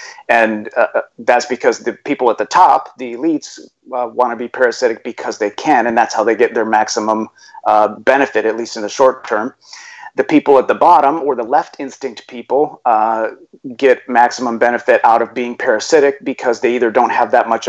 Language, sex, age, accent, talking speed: English, male, 30-49, American, 200 wpm